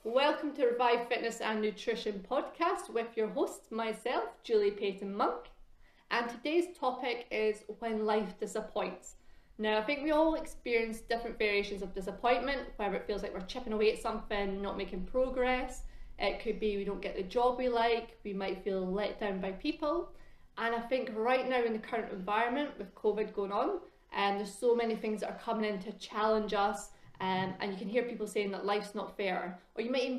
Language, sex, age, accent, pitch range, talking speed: English, female, 30-49, British, 205-250 Hz, 200 wpm